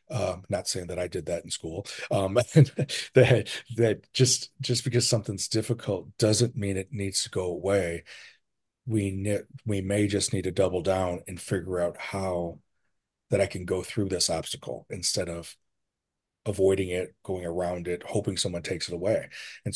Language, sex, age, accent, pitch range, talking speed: English, male, 40-59, American, 95-110 Hz, 175 wpm